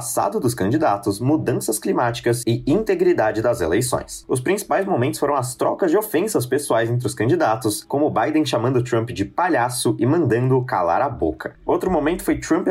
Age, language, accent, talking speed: 20-39, Portuguese, Brazilian, 170 wpm